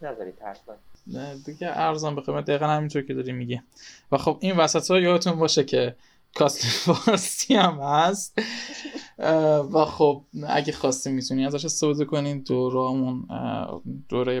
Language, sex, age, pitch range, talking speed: Persian, male, 10-29, 125-150 Hz, 140 wpm